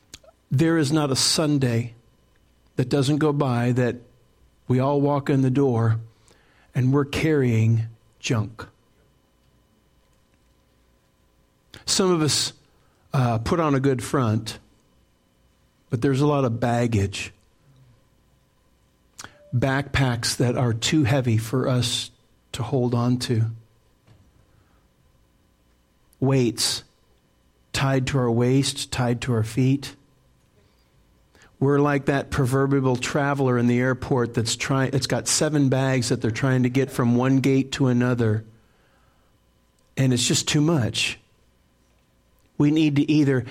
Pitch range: 115-140 Hz